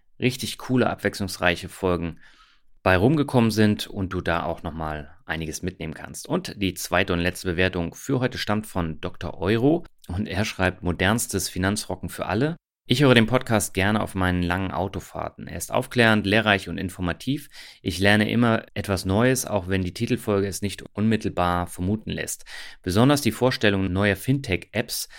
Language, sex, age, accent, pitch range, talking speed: German, male, 30-49, German, 90-110 Hz, 160 wpm